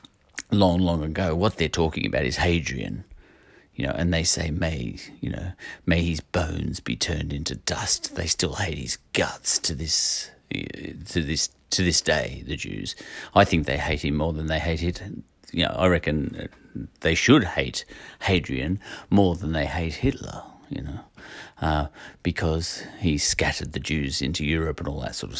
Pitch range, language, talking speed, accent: 75-90 Hz, English, 180 wpm, British